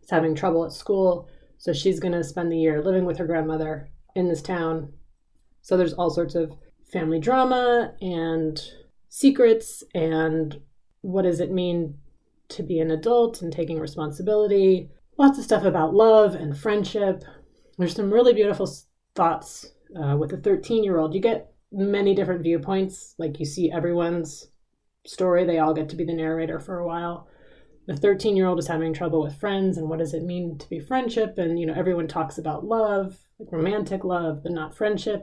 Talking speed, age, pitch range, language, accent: 180 wpm, 30-49, 165-215 Hz, English, American